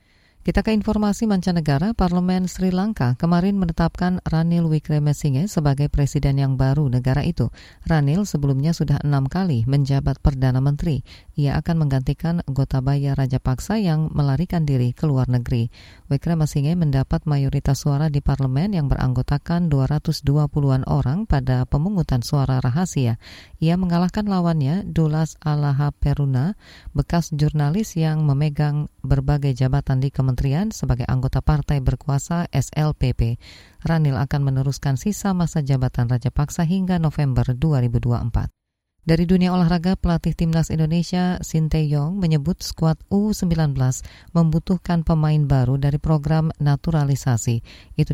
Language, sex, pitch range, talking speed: Indonesian, female, 135-165 Hz, 120 wpm